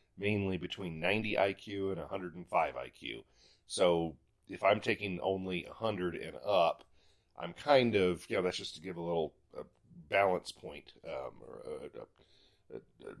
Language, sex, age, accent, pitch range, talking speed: English, male, 40-59, American, 95-135 Hz, 150 wpm